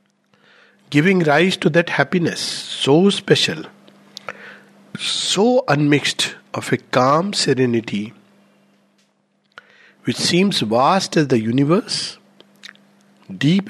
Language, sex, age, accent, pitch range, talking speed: English, male, 50-69, Indian, 120-170 Hz, 90 wpm